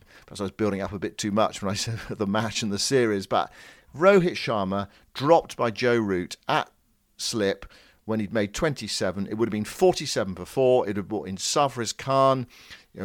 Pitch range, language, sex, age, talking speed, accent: 100-125 Hz, English, male, 50-69, 205 wpm, British